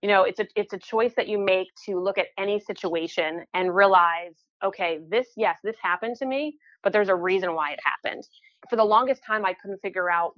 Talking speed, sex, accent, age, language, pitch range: 225 wpm, female, American, 30-49, English, 175-220 Hz